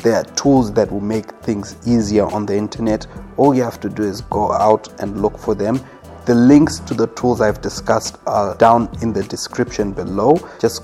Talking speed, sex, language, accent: 205 wpm, male, English, South African